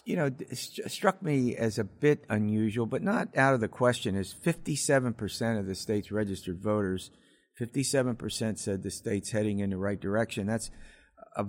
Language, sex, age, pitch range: English, male, 50-69, 100-130 Hz